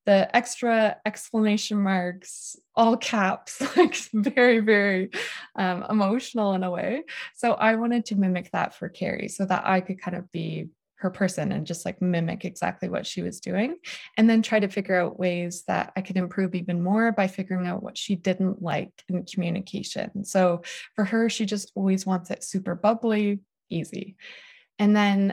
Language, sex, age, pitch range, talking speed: English, female, 20-39, 185-230 Hz, 180 wpm